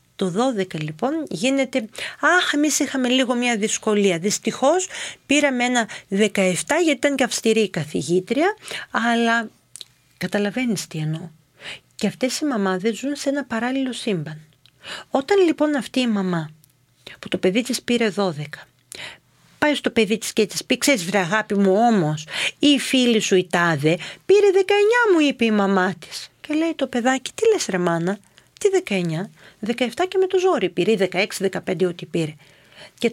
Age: 40-59